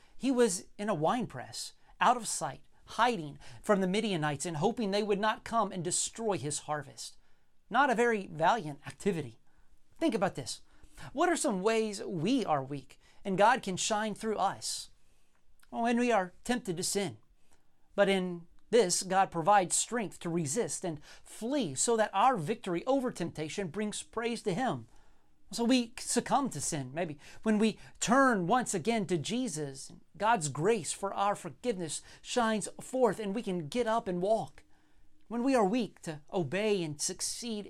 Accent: American